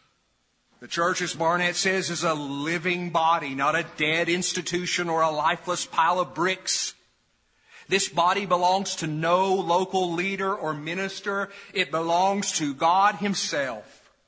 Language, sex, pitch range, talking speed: English, male, 155-200 Hz, 140 wpm